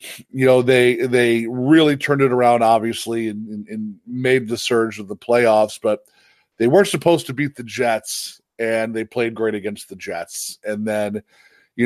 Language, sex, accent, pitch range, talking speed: English, male, American, 115-145 Hz, 180 wpm